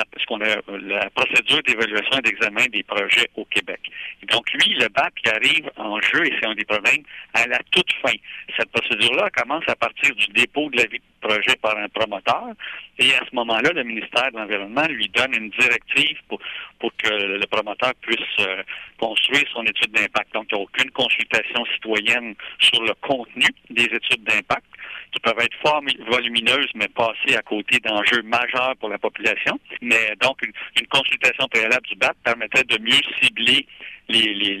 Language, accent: French, French